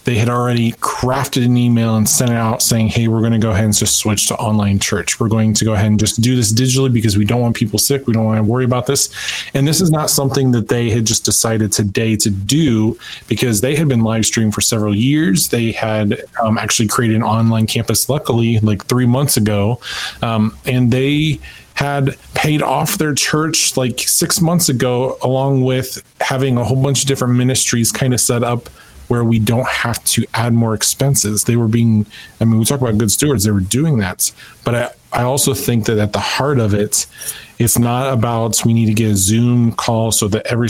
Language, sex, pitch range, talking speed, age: English, male, 110-130 Hz, 225 wpm, 20-39